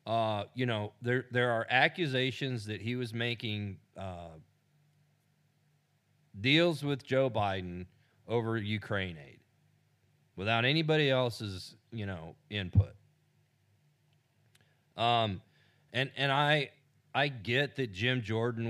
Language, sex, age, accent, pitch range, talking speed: English, male, 40-59, American, 105-145 Hz, 110 wpm